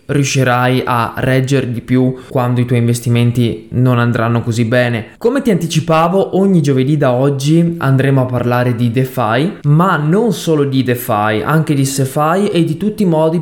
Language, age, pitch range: Italian, 20-39, 130-155 Hz